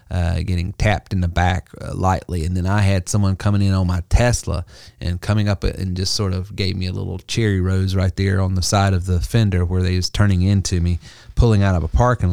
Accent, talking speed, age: American, 245 wpm, 30-49